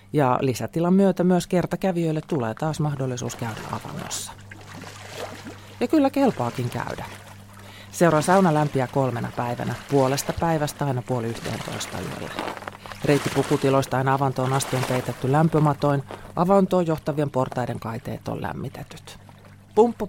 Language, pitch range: Finnish, 115-165 Hz